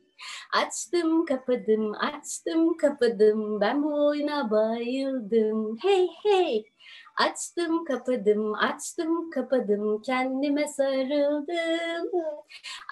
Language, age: Turkish, 30-49